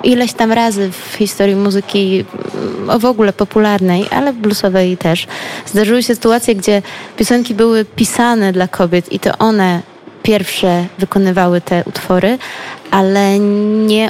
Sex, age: female, 20-39